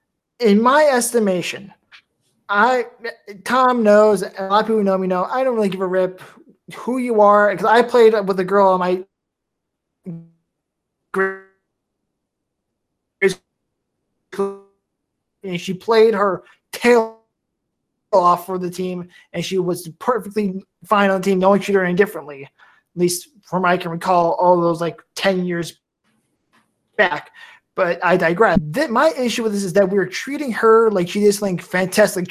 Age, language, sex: 20-39, English, male